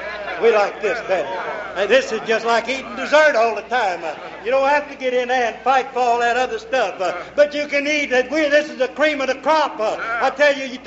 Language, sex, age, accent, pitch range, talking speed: English, male, 60-79, American, 255-290 Hz, 245 wpm